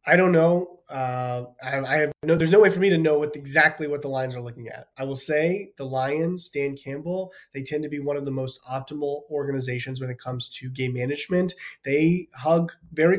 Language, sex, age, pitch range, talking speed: English, male, 20-39, 135-170 Hz, 230 wpm